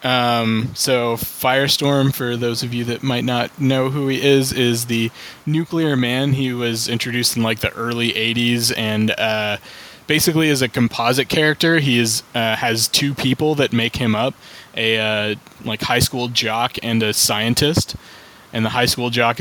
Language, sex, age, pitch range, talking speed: English, male, 20-39, 115-135 Hz, 175 wpm